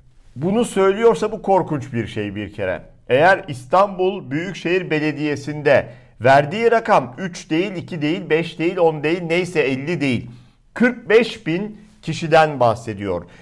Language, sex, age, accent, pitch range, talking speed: Turkish, male, 50-69, native, 145-185 Hz, 130 wpm